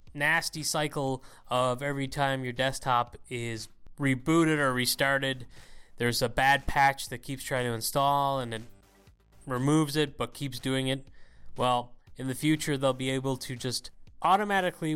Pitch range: 125-155 Hz